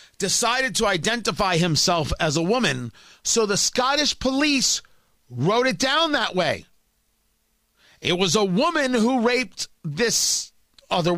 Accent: American